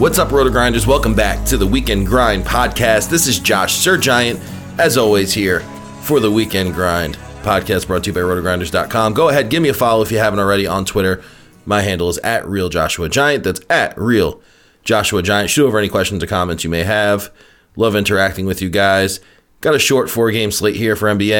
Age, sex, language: 30-49, male, English